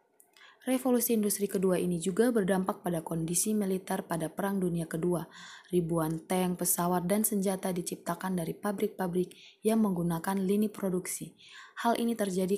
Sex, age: female, 20-39